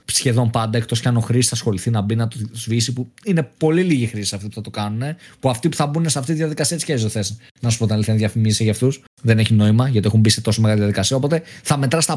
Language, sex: Greek, male